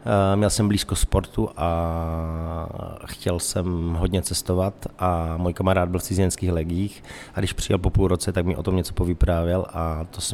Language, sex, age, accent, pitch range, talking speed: Czech, male, 30-49, native, 90-105 Hz, 180 wpm